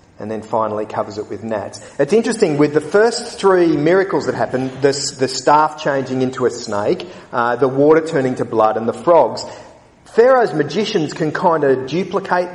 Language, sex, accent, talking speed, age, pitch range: English, male, Australian, 180 wpm, 40-59, 125-185 Hz